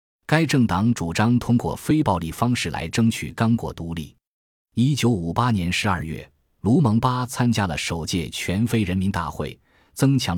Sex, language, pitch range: male, Chinese, 85-115 Hz